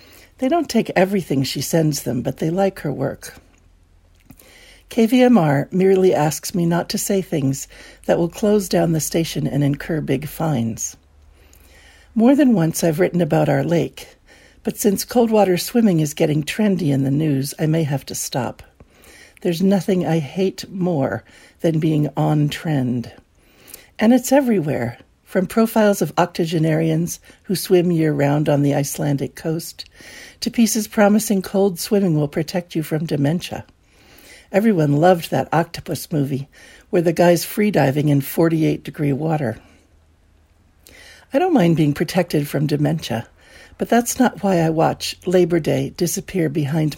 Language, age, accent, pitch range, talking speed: English, 60-79, American, 135-185 Hz, 150 wpm